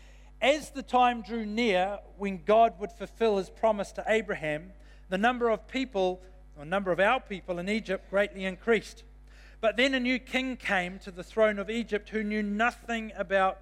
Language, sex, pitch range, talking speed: English, male, 175-225 Hz, 180 wpm